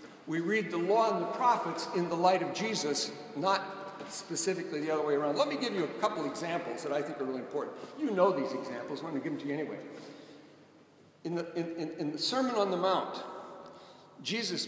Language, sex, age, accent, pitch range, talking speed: English, male, 60-79, American, 165-240 Hz, 210 wpm